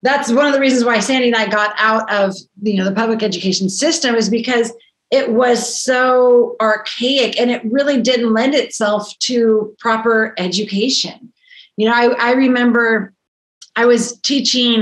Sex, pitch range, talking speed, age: female, 205-250 Hz, 165 wpm, 30-49